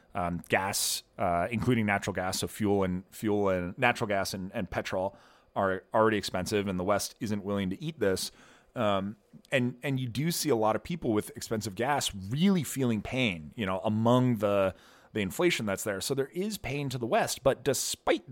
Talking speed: 195 wpm